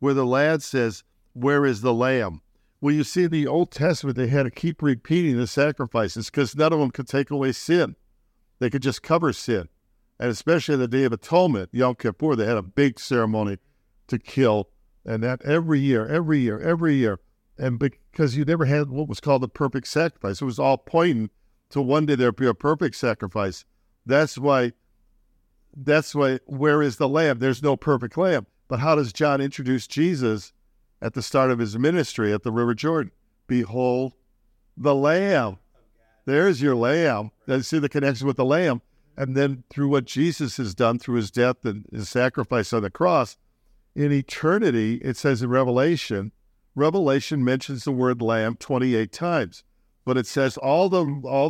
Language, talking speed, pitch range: English, 185 wpm, 115-145 Hz